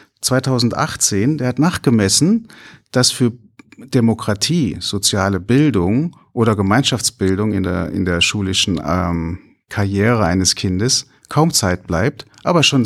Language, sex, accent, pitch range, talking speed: German, male, German, 95-130 Hz, 115 wpm